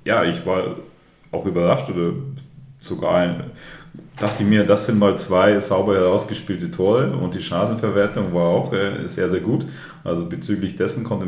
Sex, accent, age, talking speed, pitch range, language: male, German, 30-49, 150 wpm, 90-105 Hz, German